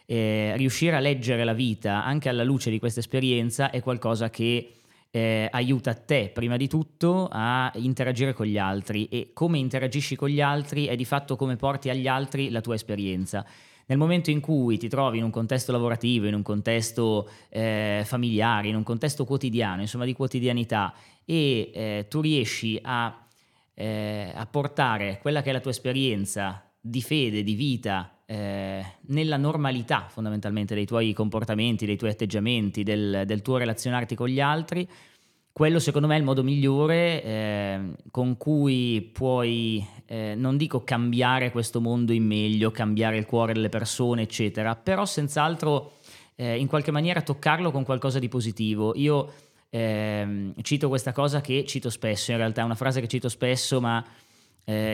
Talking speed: 165 wpm